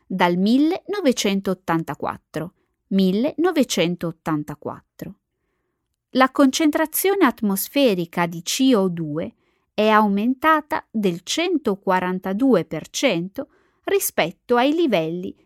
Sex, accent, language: female, native, Italian